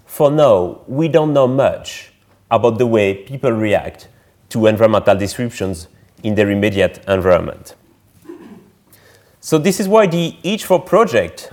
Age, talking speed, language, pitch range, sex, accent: 30-49, 130 wpm, English, 105-140 Hz, male, French